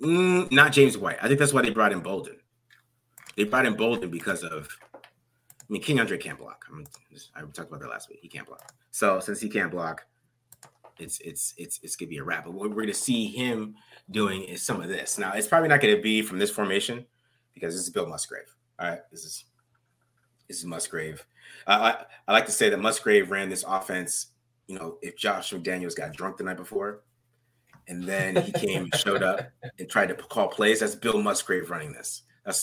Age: 30-49